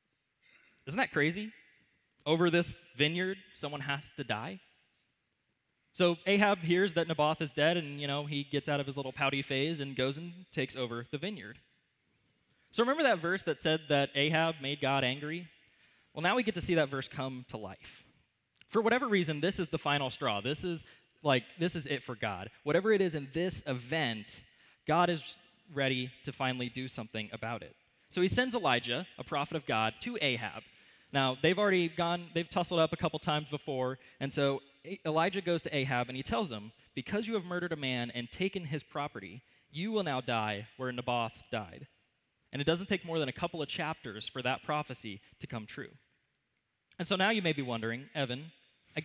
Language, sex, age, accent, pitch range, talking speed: English, male, 20-39, American, 130-170 Hz, 195 wpm